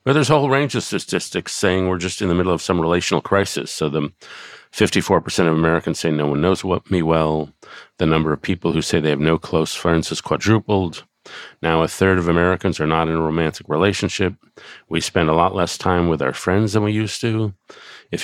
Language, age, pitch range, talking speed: English, 50-69, 85-105 Hz, 220 wpm